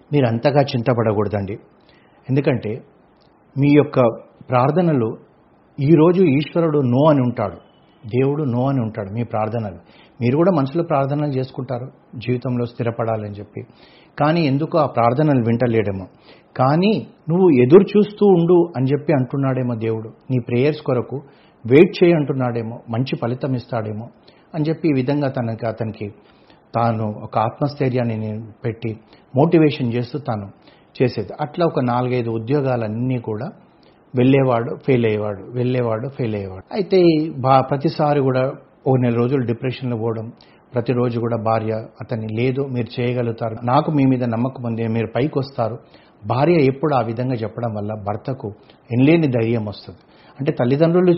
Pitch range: 115-145 Hz